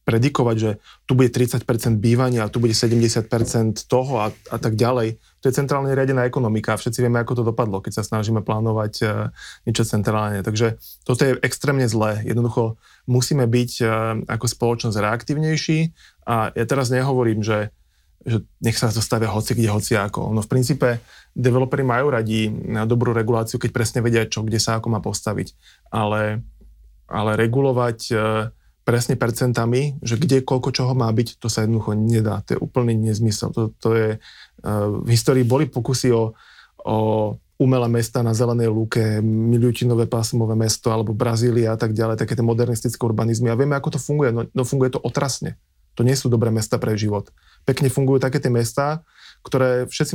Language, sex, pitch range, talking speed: Slovak, male, 110-125 Hz, 175 wpm